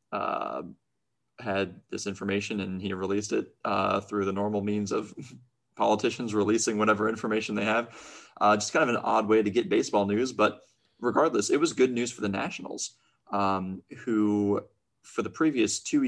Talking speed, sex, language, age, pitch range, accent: 170 wpm, male, English, 20-39, 100-110 Hz, American